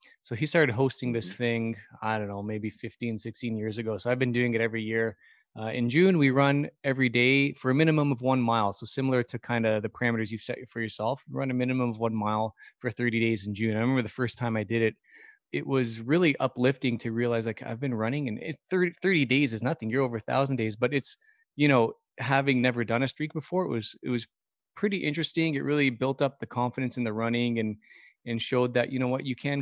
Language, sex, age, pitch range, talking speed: English, male, 20-39, 115-135 Hz, 240 wpm